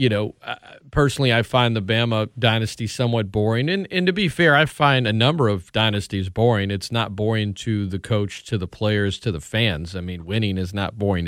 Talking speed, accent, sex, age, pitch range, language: 215 wpm, American, male, 40-59, 100-130 Hz, English